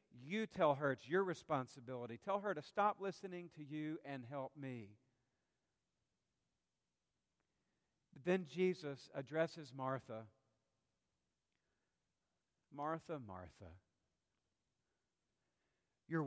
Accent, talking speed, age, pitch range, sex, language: American, 85 wpm, 50-69, 130-170 Hz, male, English